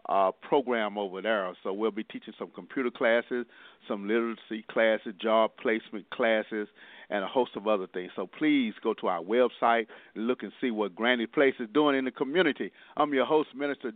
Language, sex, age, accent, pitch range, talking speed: English, male, 50-69, American, 110-135 Hz, 190 wpm